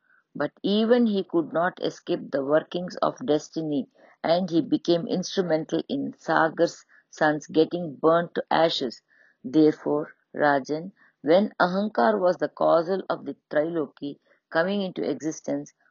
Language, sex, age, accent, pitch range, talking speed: English, female, 50-69, Indian, 155-205 Hz, 130 wpm